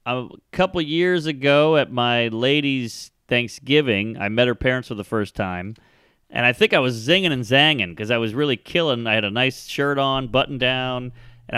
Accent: American